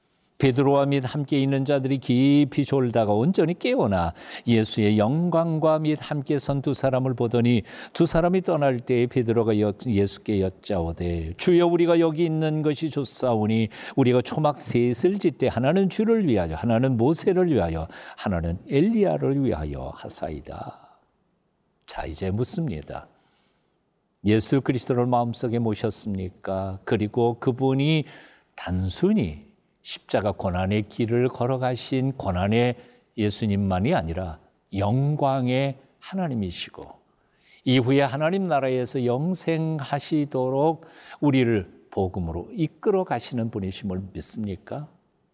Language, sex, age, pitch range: Korean, male, 50-69, 105-155 Hz